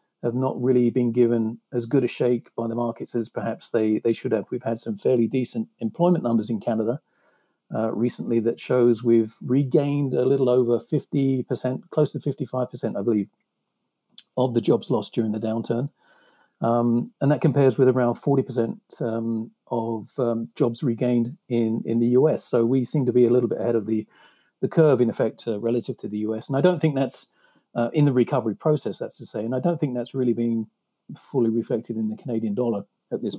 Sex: male